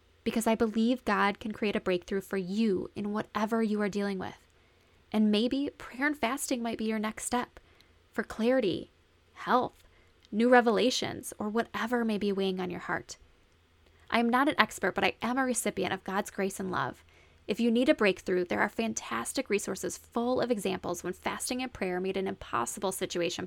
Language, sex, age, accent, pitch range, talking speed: English, female, 10-29, American, 185-240 Hz, 190 wpm